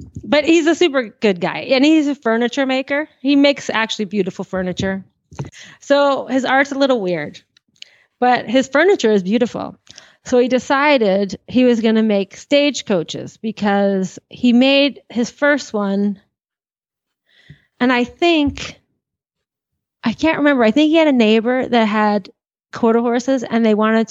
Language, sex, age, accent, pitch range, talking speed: English, female, 30-49, American, 200-260 Hz, 150 wpm